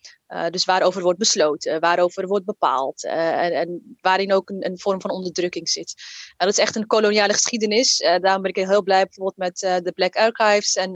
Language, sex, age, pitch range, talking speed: Dutch, female, 20-39, 185-220 Hz, 215 wpm